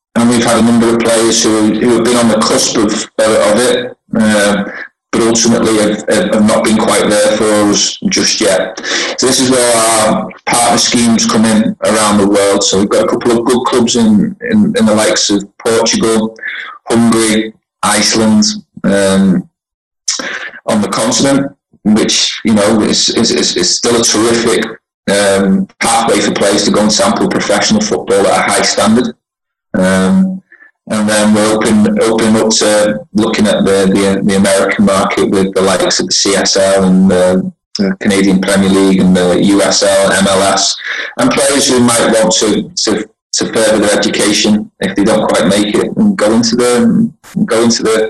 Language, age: English, 30-49